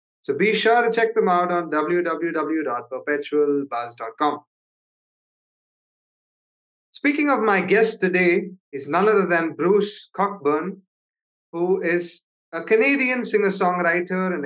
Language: English